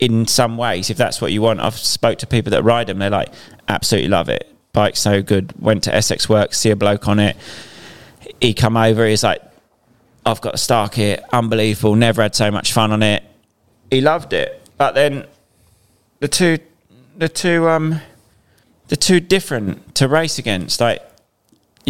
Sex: male